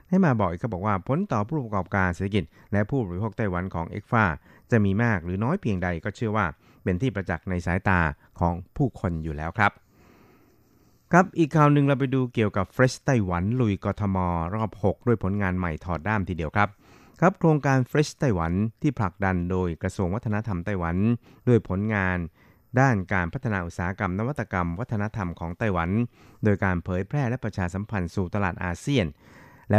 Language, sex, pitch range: Thai, male, 90-115 Hz